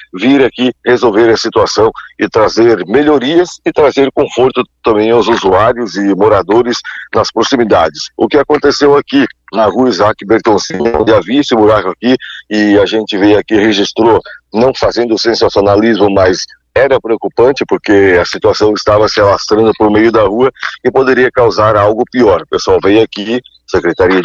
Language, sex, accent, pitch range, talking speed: Portuguese, male, Brazilian, 110-155 Hz, 160 wpm